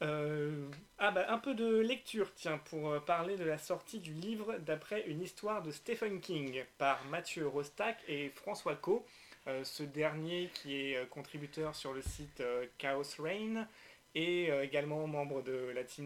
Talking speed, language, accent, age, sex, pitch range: 175 wpm, French, French, 20-39, male, 135-175 Hz